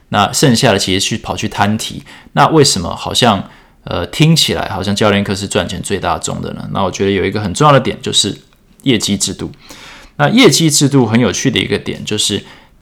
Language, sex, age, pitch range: Chinese, male, 20-39, 100-130 Hz